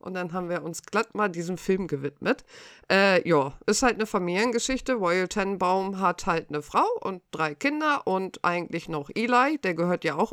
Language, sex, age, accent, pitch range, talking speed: German, female, 50-69, German, 170-220 Hz, 190 wpm